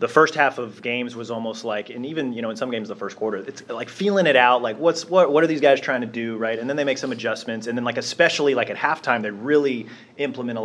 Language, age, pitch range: English, 30-49, 110-140 Hz